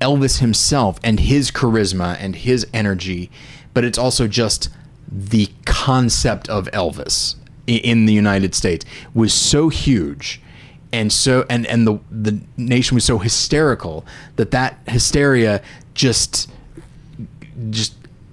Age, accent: 30-49, American